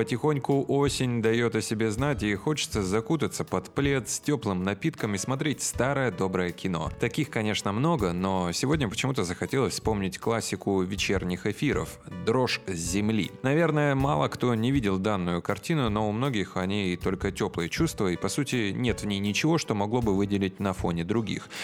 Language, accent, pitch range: Russian, native, 95-125 Hz